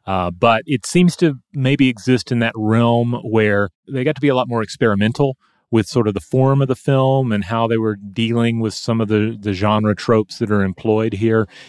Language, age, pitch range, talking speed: English, 30-49, 100-125 Hz, 220 wpm